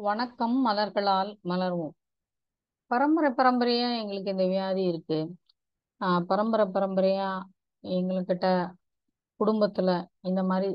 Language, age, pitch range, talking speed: Tamil, 30-49, 180-225 Hz, 95 wpm